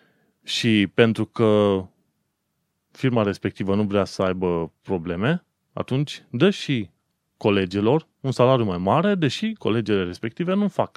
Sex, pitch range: male, 100-140 Hz